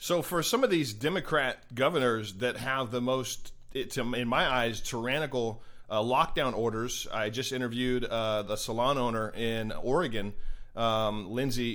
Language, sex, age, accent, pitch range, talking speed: English, male, 30-49, American, 115-135 Hz, 155 wpm